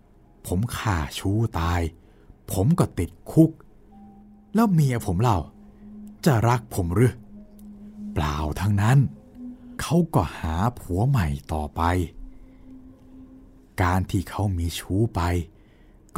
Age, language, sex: 60-79, Thai, male